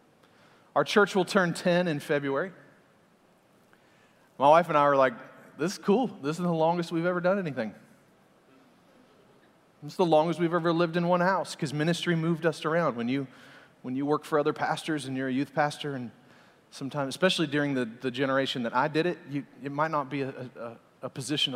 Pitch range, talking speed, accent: 130-170 Hz, 200 wpm, American